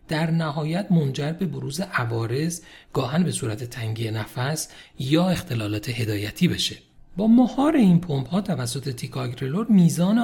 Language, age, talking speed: Persian, 40-59, 135 wpm